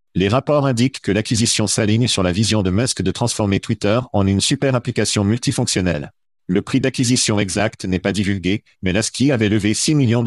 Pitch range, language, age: 100-125 Hz, French, 50-69